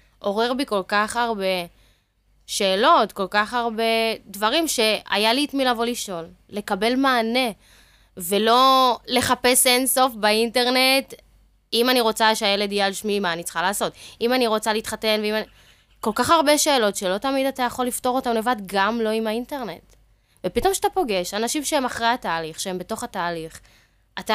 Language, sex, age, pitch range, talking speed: Hebrew, female, 20-39, 190-245 Hz, 160 wpm